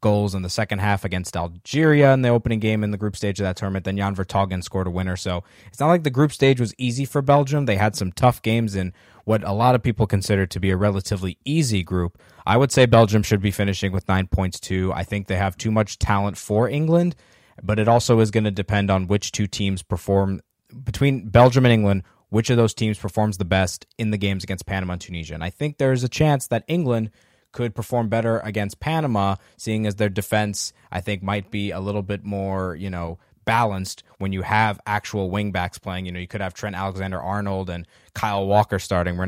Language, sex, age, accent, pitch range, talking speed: English, male, 20-39, American, 95-115 Hz, 230 wpm